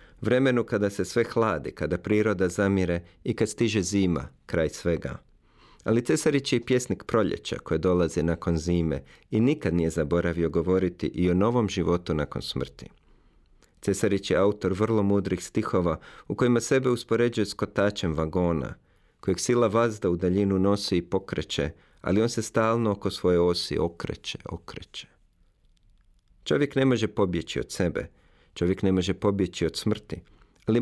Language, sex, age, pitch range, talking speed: Croatian, male, 40-59, 90-115 Hz, 150 wpm